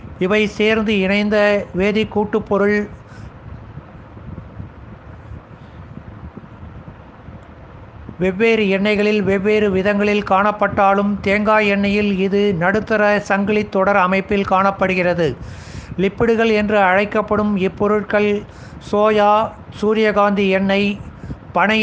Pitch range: 195-215 Hz